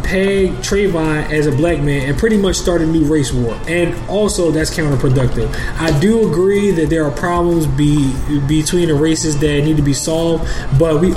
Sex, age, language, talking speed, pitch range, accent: male, 20-39, English, 190 wpm, 135-160 Hz, American